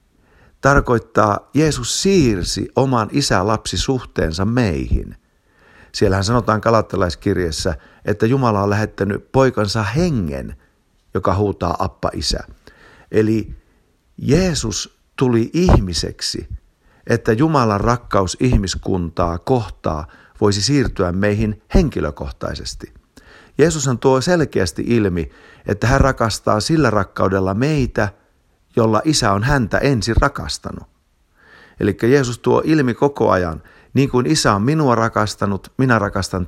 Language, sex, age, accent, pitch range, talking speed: Finnish, male, 50-69, native, 90-120 Hz, 100 wpm